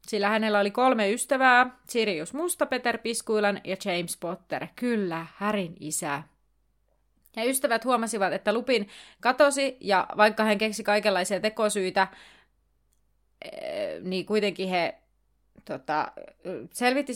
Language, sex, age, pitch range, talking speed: Finnish, female, 30-49, 190-245 Hz, 110 wpm